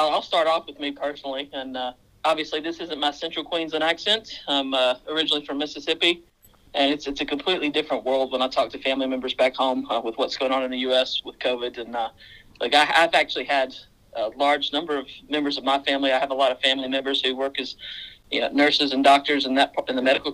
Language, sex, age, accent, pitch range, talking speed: English, male, 40-59, American, 130-145 Hz, 240 wpm